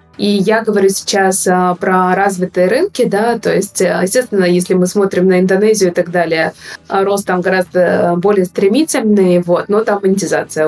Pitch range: 180-205 Hz